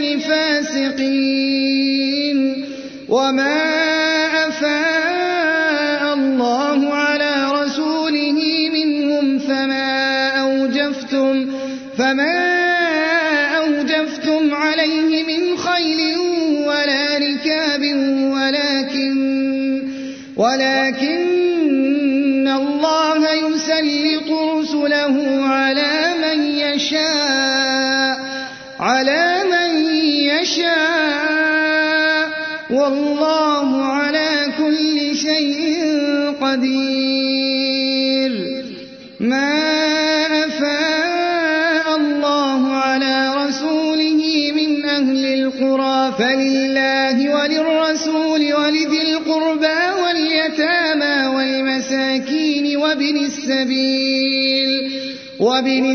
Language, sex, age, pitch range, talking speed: Arabic, male, 30-49, 270-315 Hz, 50 wpm